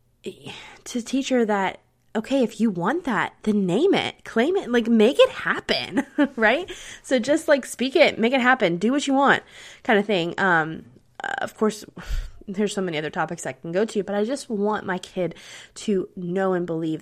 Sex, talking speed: female, 195 wpm